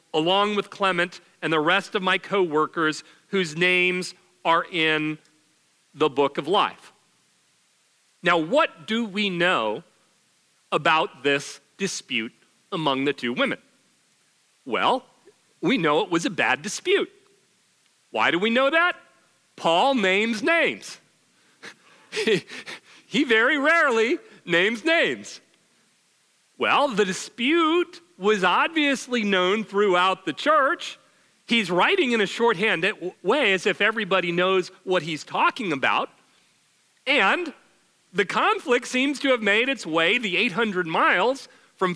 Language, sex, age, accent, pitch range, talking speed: English, male, 40-59, American, 180-265 Hz, 125 wpm